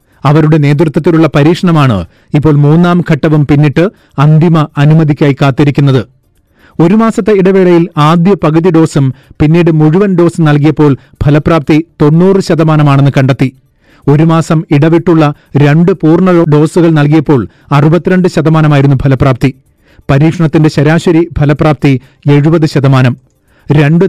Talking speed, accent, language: 100 wpm, native, Malayalam